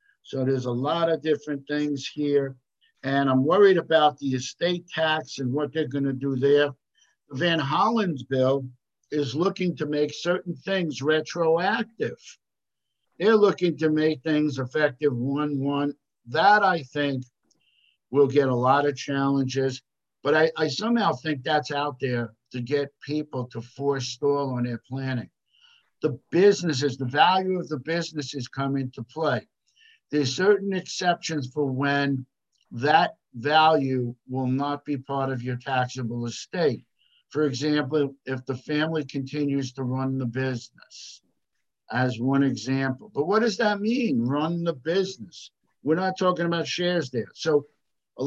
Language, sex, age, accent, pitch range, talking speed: English, male, 60-79, American, 130-160 Hz, 150 wpm